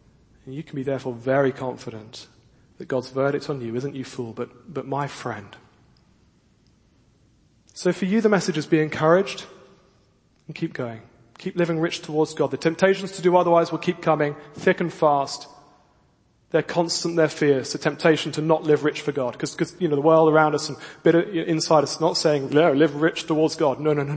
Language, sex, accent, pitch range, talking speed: English, male, British, 130-160 Hz, 195 wpm